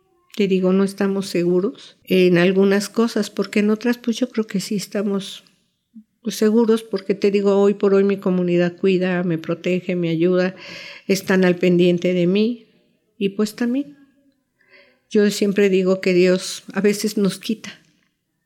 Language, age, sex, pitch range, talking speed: Spanish, 50-69, female, 180-215 Hz, 155 wpm